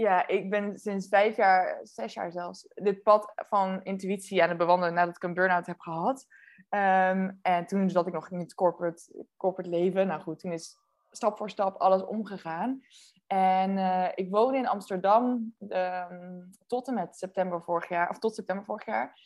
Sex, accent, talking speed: female, Dutch, 180 wpm